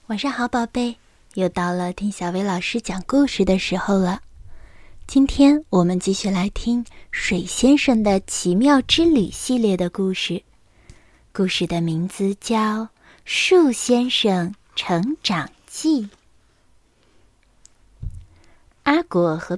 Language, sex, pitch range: Chinese, female, 180-270 Hz